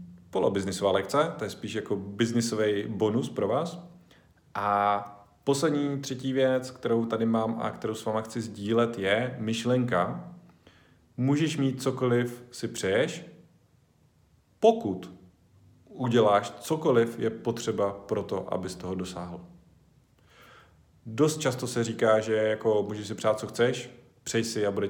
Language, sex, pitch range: Czech, male, 100-120 Hz